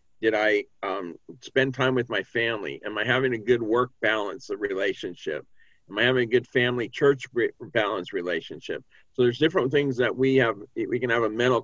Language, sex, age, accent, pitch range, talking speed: English, male, 50-69, American, 105-135 Hz, 190 wpm